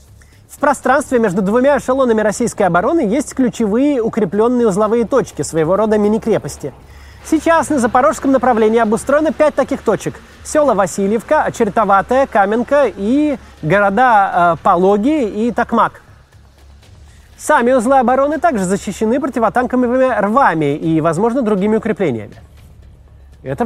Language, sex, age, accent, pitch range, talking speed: Russian, male, 30-49, native, 185-250 Hz, 115 wpm